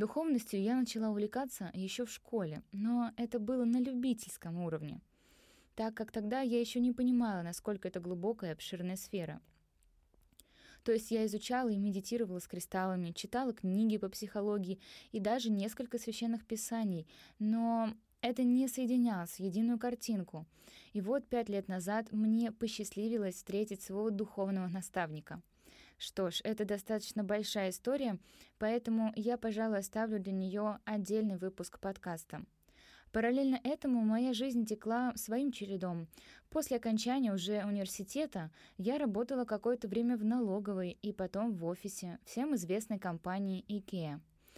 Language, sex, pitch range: Russian, female, 190-235 Hz